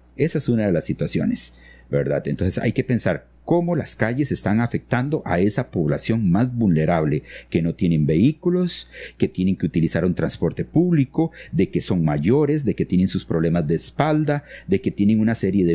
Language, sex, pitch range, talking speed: English, male, 80-130 Hz, 185 wpm